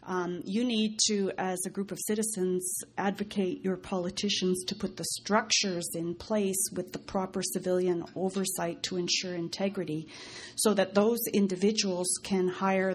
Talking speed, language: 150 wpm, English